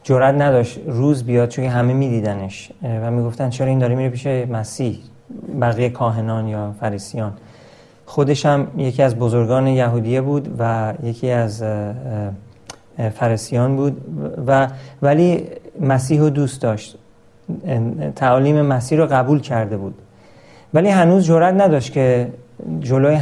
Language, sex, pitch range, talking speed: Persian, male, 120-150 Hz, 130 wpm